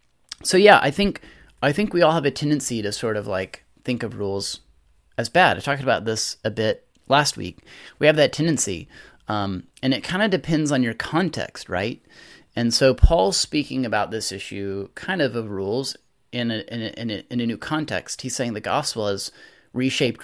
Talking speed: 205 wpm